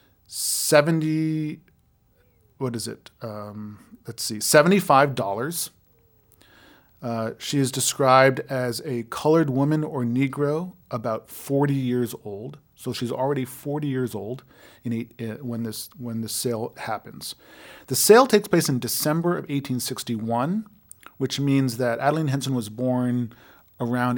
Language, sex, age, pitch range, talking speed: English, male, 40-59, 115-140 Hz, 135 wpm